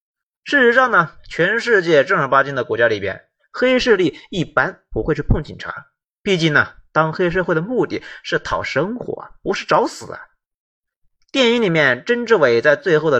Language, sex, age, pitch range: Chinese, male, 30-49, 155-250 Hz